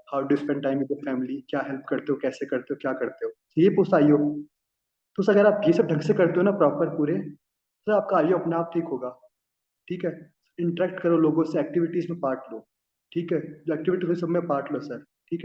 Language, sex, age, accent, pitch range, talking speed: Hindi, male, 20-39, native, 150-185 Hz, 220 wpm